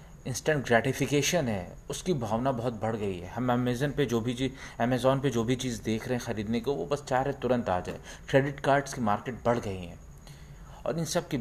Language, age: Hindi, 30-49